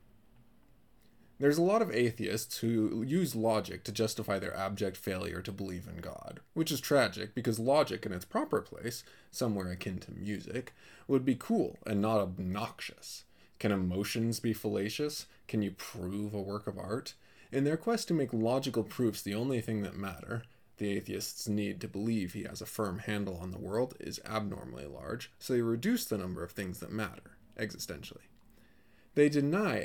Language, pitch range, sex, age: English, 100-135 Hz, male, 20-39